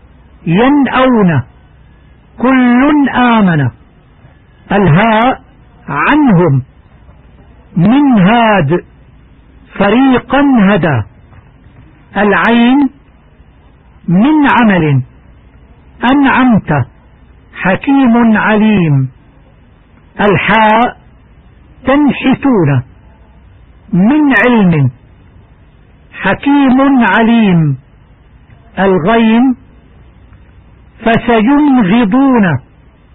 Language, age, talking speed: Arabic, 60-79, 40 wpm